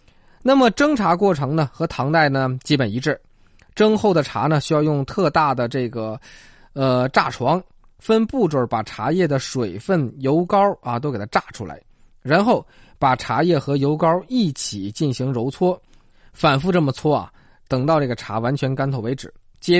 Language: Chinese